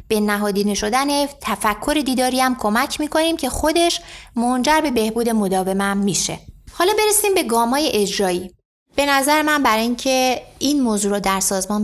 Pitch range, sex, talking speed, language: 210-280 Hz, female, 155 wpm, Persian